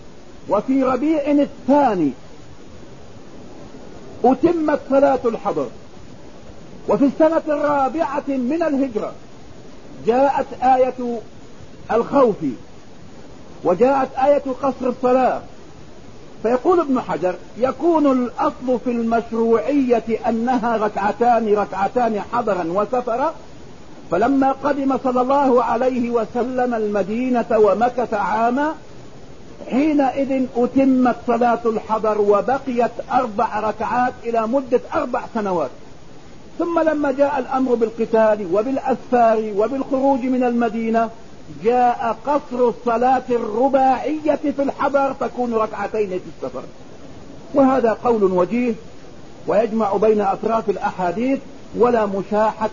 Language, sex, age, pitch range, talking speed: English, male, 50-69, 220-270 Hz, 90 wpm